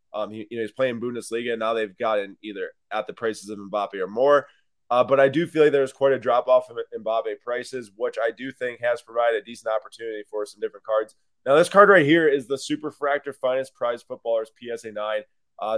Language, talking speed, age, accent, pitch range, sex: English, 220 wpm, 20-39, American, 105-135 Hz, male